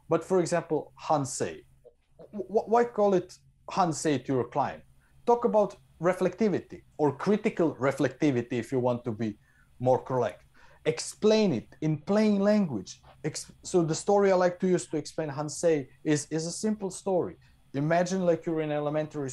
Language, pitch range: English, 135-180 Hz